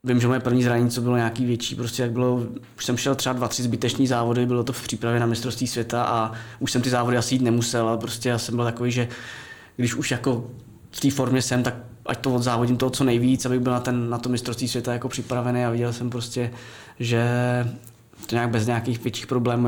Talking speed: 240 wpm